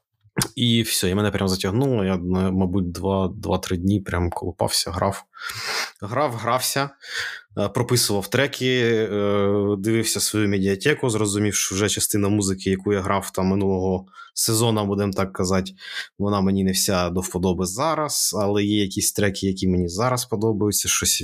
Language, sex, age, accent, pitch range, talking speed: Ukrainian, male, 20-39, native, 95-110 Hz, 140 wpm